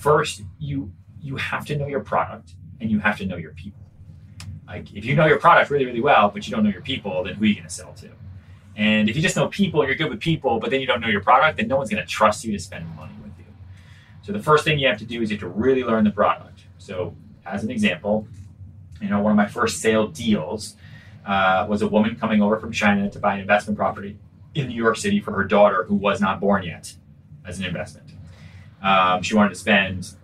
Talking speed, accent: 255 wpm, American